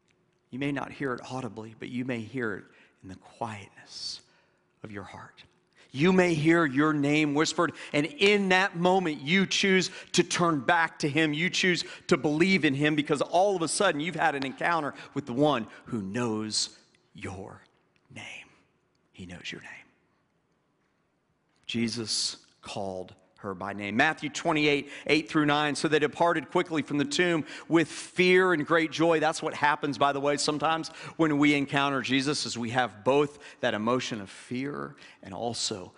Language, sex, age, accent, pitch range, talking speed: English, male, 40-59, American, 125-165 Hz, 170 wpm